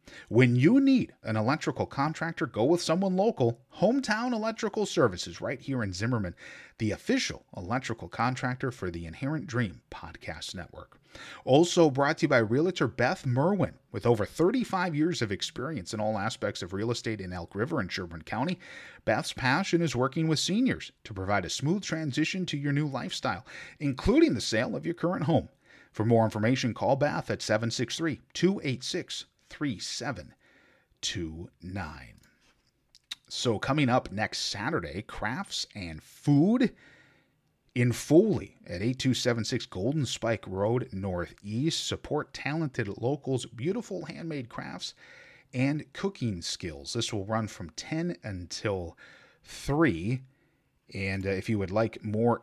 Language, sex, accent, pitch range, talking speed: English, male, American, 100-155 Hz, 140 wpm